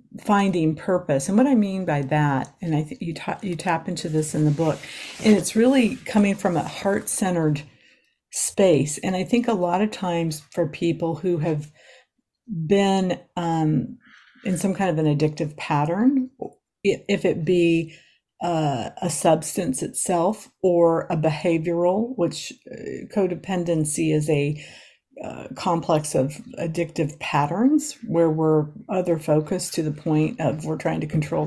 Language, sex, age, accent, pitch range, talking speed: English, female, 50-69, American, 155-190 Hz, 150 wpm